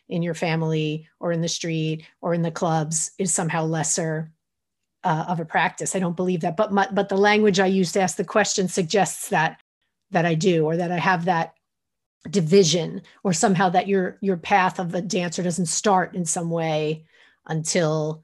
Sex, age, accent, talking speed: female, 30-49, American, 195 wpm